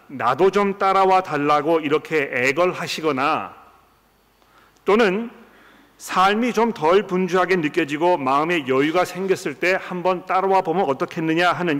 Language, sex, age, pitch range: Korean, male, 40-59, 150-190 Hz